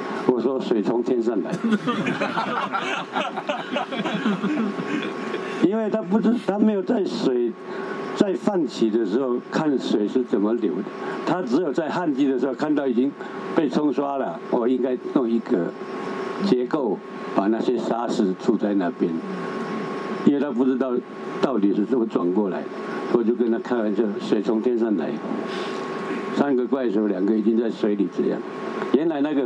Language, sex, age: Chinese, male, 60-79